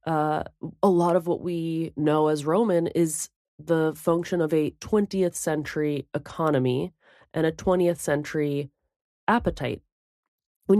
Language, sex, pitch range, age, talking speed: English, female, 135-165 Hz, 20-39, 130 wpm